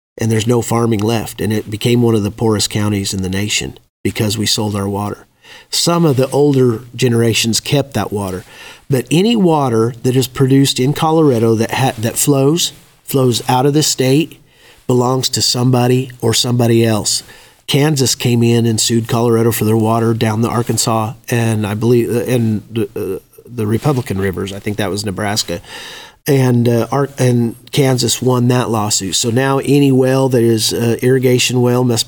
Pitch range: 110-130 Hz